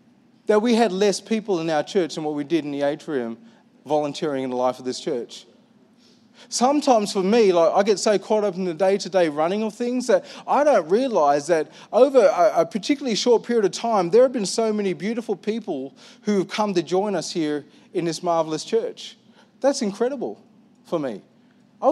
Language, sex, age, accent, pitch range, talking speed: English, male, 30-49, Australian, 175-235 Hz, 200 wpm